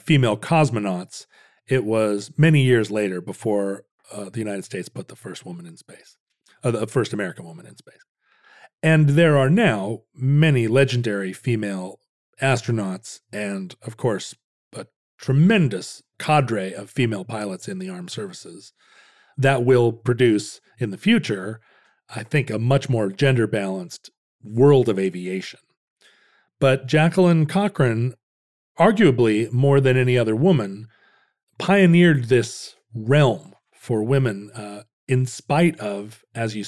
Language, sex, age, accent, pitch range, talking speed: English, male, 40-59, American, 110-160 Hz, 135 wpm